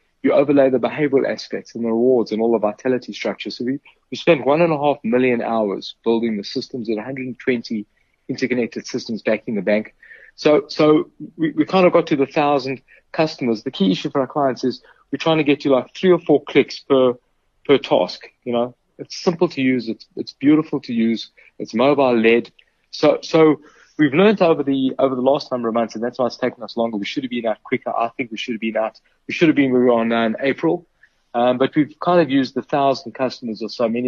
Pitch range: 115-145 Hz